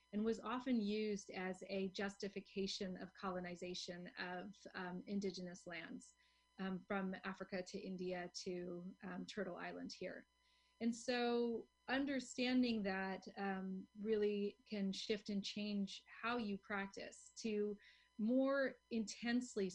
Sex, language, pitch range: female, English, 190-225 Hz